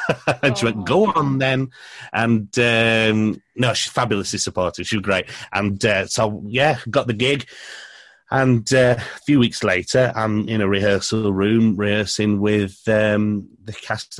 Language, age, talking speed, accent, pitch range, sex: English, 30-49, 155 wpm, British, 95-115 Hz, male